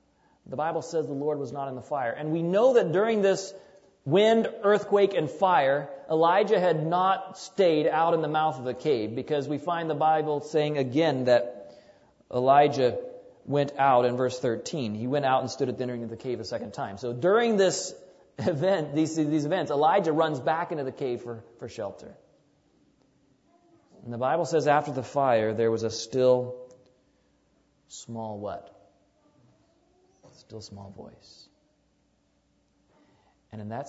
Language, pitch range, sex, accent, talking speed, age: English, 105-155 Hz, male, American, 165 wpm, 40-59